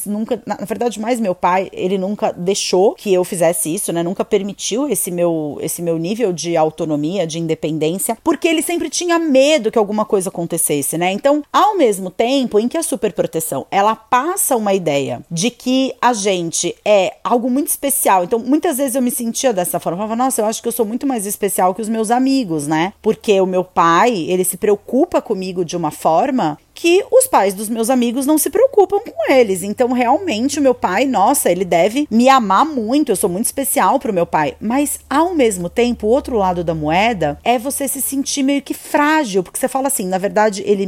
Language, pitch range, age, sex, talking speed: Portuguese, 185-280 Hz, 30-49, female, 210 wpm